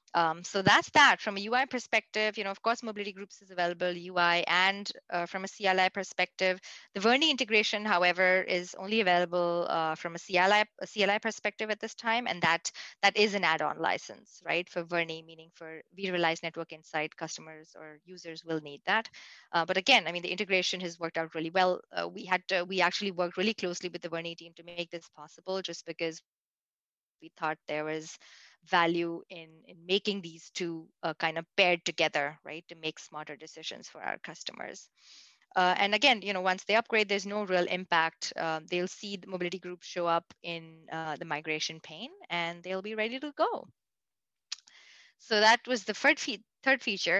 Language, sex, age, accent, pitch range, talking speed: English, female, 20-39, Indian, 165-205 Hz, 195 wpm